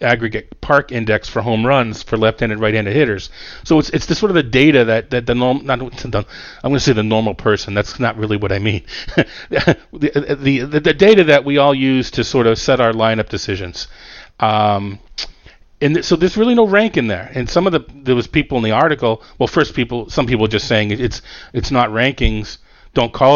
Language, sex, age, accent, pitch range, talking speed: English, male, 40-59, American, 110-140 Hz, 220 wpm